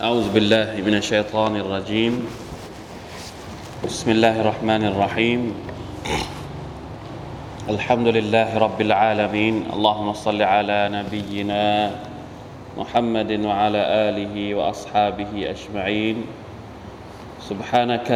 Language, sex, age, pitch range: Thai, male, 20-39, 105-115 Hz